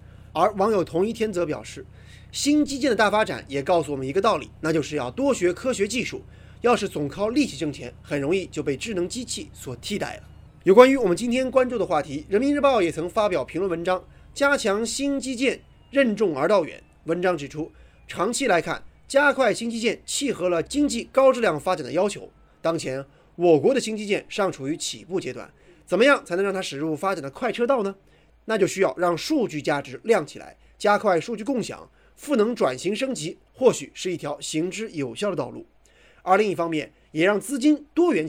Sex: male